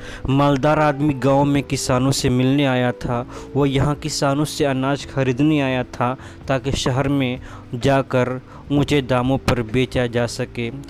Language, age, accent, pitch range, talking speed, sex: Hindi, 20-39, native, 125-140 Hz, 150 wpm, male